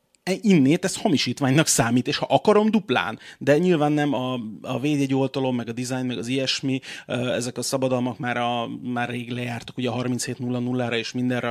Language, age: Hungarian, 30-49